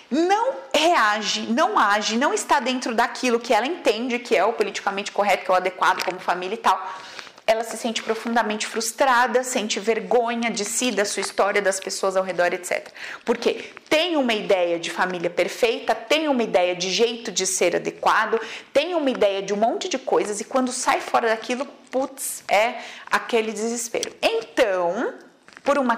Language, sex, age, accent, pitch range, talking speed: Portuguese, female, 30-49, Brazilian, 190-265 Hz, 175 wpm